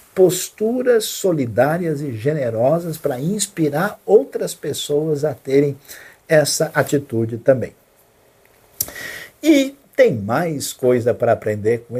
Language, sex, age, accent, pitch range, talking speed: Portuguese, male, 60-79, Brazilian, 115-165 Hz, 100 wpm